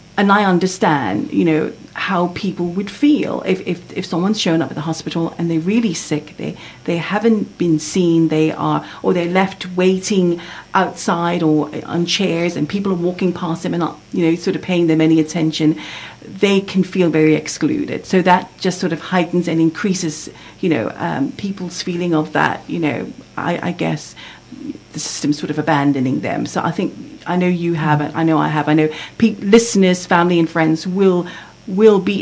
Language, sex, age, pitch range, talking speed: English, female, 50-69, 160-185 Hz, 195 wpm